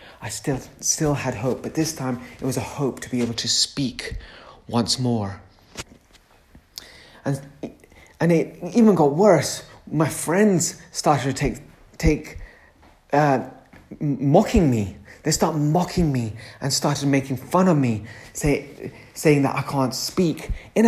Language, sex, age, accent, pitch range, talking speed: English, male, 30-49, British, 115-145 Hz, 150 wpm